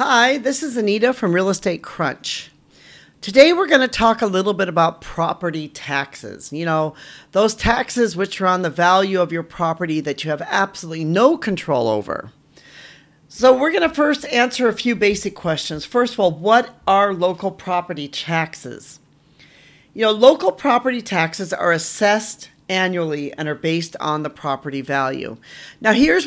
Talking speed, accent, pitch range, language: 165 wpm, American, 155-210 Hz, English